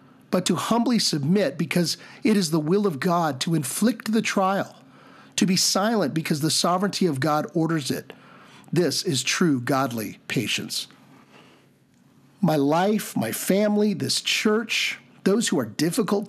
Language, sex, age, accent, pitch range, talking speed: English, male, 50-69, American, 150-205 Hz, 145 wpm